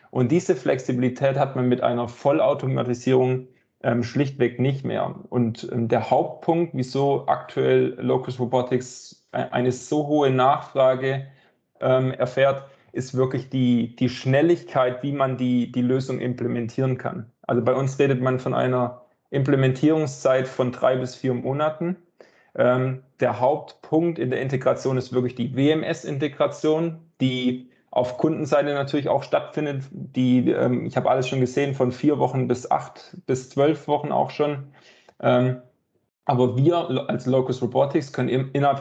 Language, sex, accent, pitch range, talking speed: German, male, German, 125-140 Hz, 140 wpm